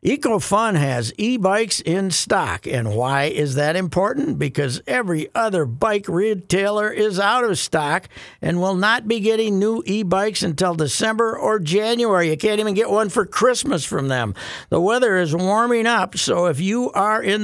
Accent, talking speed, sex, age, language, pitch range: American, 170 wpm, male, 60-79, English, 165-210 Hz